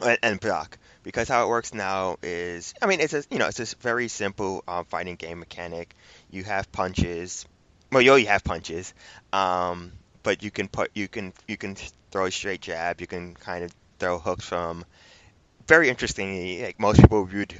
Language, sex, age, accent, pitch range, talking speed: English, male, 20-39, American, 85-105 Hz, 190 wpm